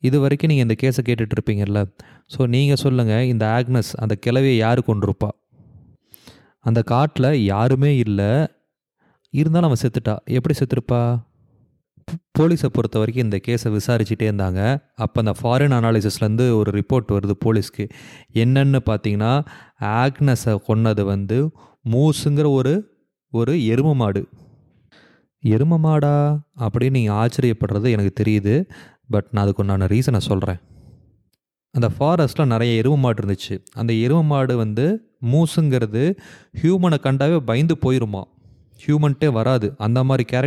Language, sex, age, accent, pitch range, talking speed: English, male, 20-39, Indian, 110-140 Hz, 85 wpm